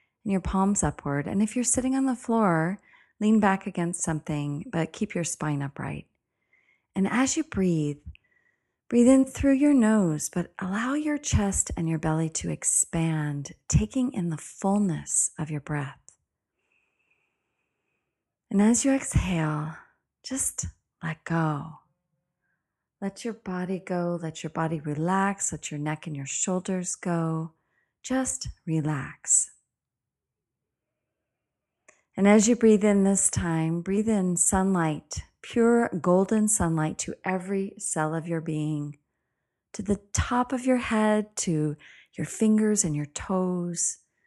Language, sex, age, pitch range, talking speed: English, female, 30-49, 155-205 Hz, 135 wpm